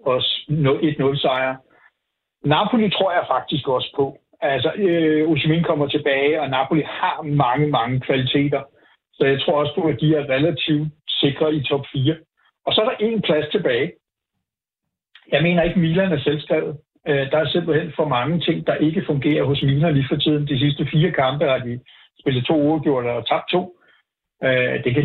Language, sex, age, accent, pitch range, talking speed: Danish, male, 60-79, native, 140-165 Hz, 175 wpm